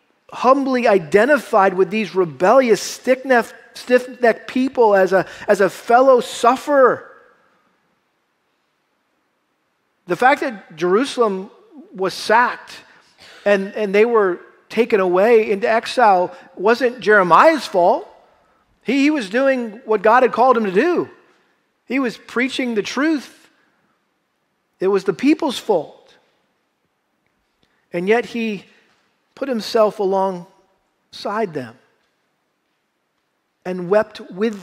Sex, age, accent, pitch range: male, 40-59, American, 180-230 Hz